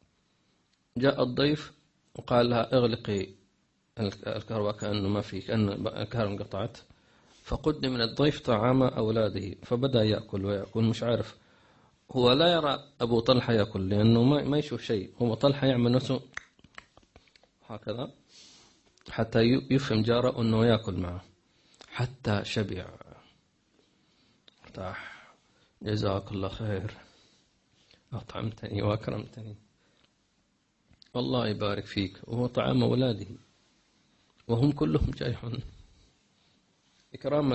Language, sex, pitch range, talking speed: English, male, 105-125 Hz, 95 wpm